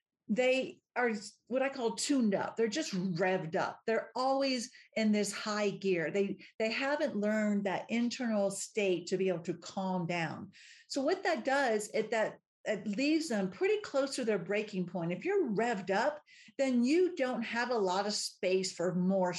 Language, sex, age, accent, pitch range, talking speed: English, female, 50-69, American, 190-250 Hz, 185 wpm